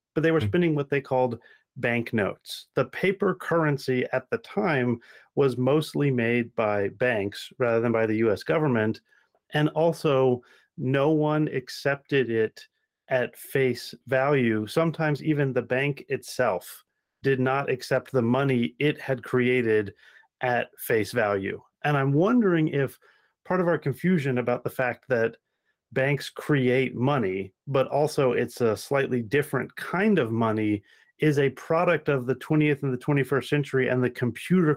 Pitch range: 120-145 Hz